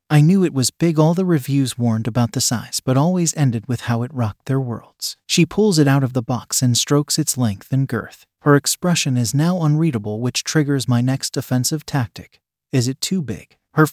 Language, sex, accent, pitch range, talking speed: English, male, American, 125-155 Hz, 215 wpm